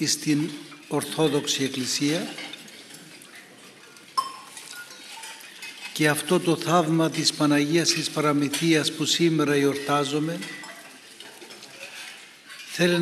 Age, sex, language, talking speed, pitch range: 60-79, male, Greek, 70 wpm, 155-175 Hz